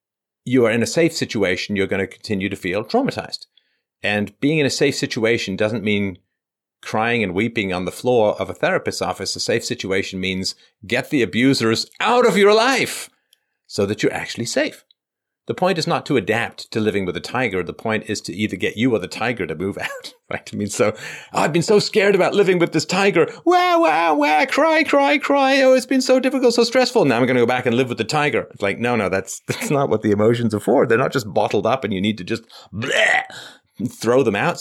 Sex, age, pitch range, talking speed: male, 40-59, 105-170 Hz, 230 wpm